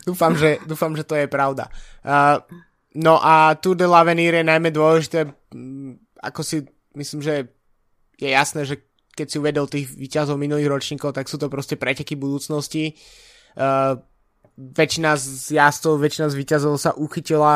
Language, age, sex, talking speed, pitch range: Slovak, 20-39, male, 155 wpm, 140-155 Hz